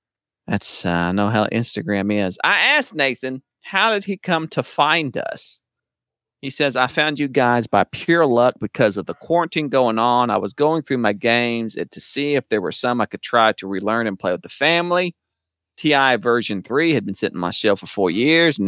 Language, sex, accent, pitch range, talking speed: English, male, American, 115-165 Hz, 215 wpm